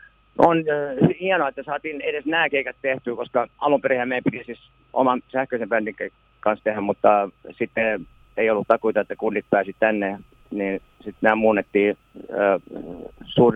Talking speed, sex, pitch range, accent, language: 150 wpm, male, 105-140 Hz, native, Finnish